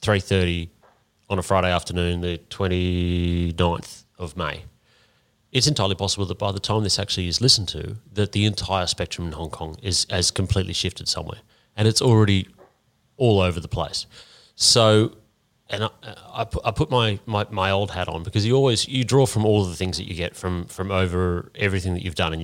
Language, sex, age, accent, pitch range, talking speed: English, male, 30-49, Australian, 90-105 Hz, 200 wpm